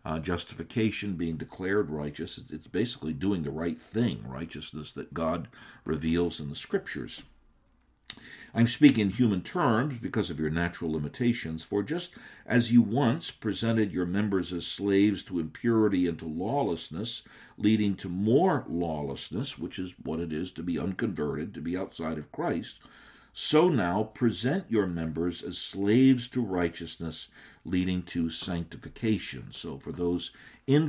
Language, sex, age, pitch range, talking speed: English, male, 60-79, 85-115 Hz, 150 wpm